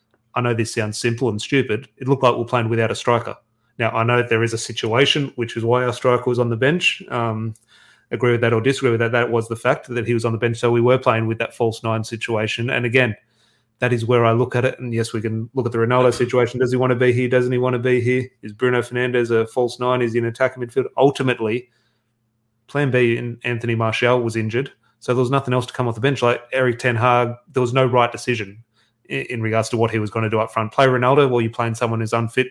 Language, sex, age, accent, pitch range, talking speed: English, male, 30-49, Australian, 115-125 Hz, 270 wpm